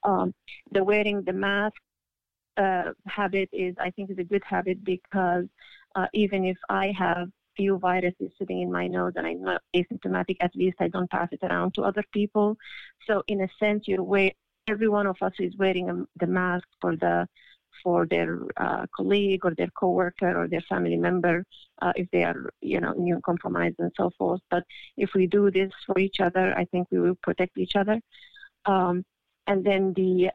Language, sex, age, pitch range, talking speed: English, female, 30-49, 180-200 Hz, 190 wpm